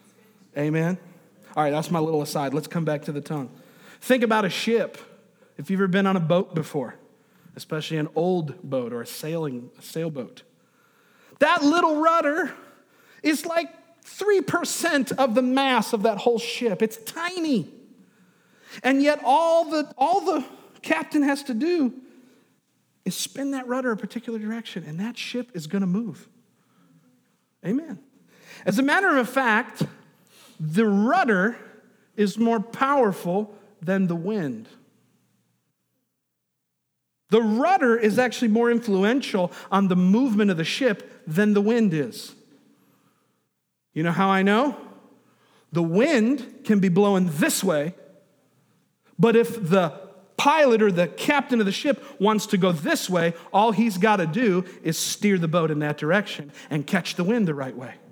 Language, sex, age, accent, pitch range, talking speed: English, male, 40-59, American, 180-250 Hz, 155 wpm